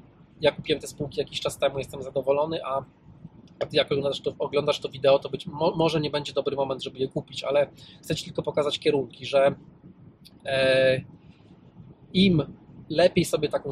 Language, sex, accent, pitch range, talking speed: Polish, male, native, 140-170 Hz, 160 wpm